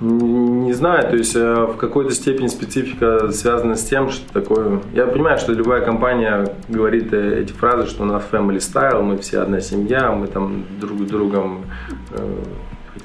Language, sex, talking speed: Russian, male, 165 wpm